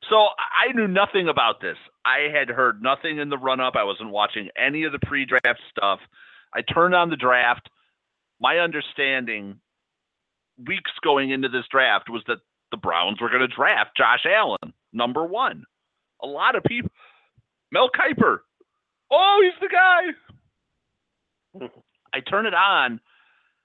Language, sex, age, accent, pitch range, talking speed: English, male, 40-59, American, 120-170 Hz, 150 wpm